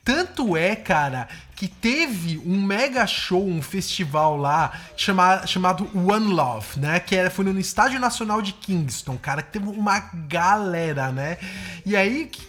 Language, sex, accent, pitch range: English, male, Brazilian, 155-205 Hz